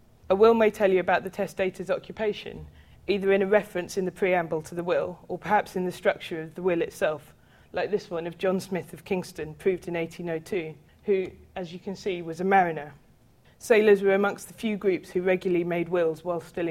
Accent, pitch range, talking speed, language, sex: British, 170-195 Hz, 210 wpm, English, female